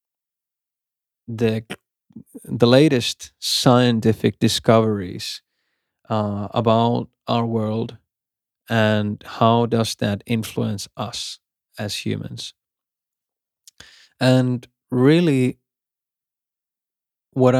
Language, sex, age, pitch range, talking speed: English, male, 20-39, 115-130 Hz, 70 wpm